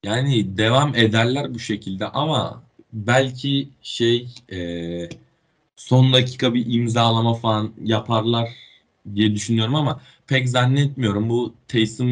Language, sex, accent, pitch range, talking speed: Turkish, male, native, 100-130 Hz, 105 wpm